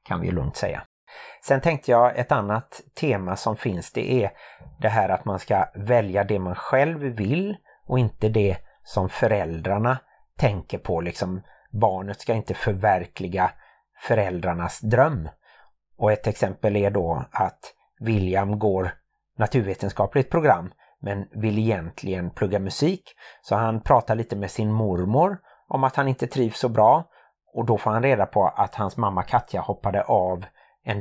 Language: Swedish